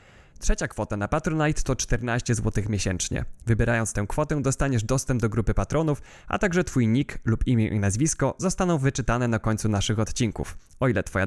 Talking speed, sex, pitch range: 175 wpm, male, 110-140 Hz